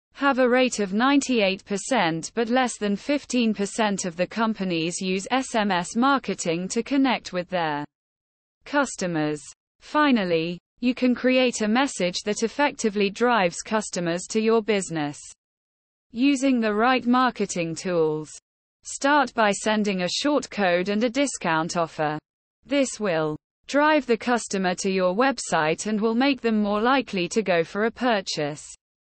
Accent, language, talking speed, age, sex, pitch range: British, English, 140 wpm, 20-39, female, 180-250 Hz